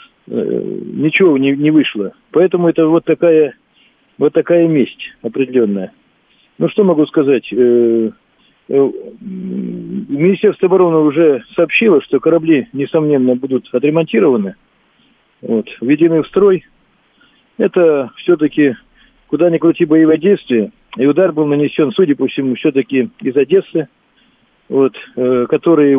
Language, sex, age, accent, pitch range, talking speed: Russian, male, 40-59, native, 135-175 Hz, 110 wpm